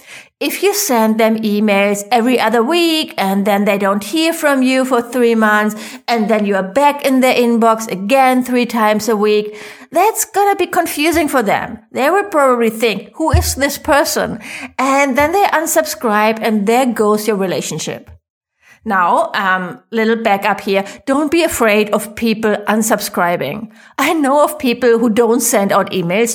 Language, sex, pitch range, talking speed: English, female, 215-275 Hz, 175 wpm